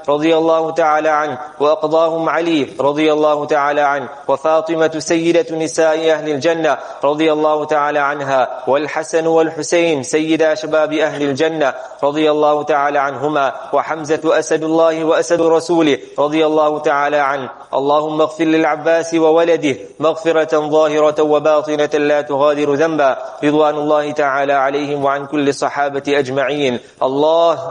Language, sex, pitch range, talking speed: English, male, 145-160 Hz, 125 wpm